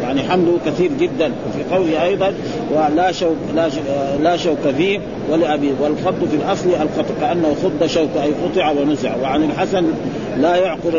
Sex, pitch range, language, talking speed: male, 155-195 Hz, Arabic, 140 wpm